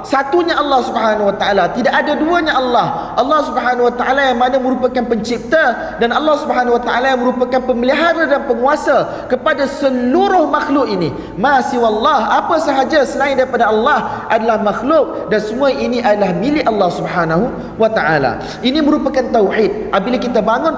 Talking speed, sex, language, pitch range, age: 160 wpm, male, Malay, 240-295 Hz, 30-49